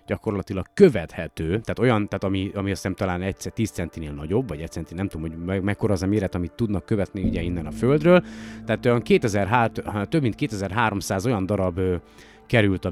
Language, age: Hungarian, 30-49